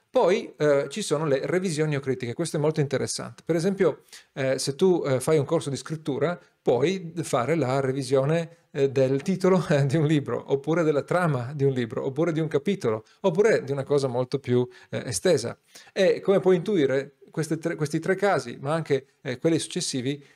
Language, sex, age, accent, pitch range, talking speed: Italian, male, 40-59, native, 135-165 Hz, 185 wpm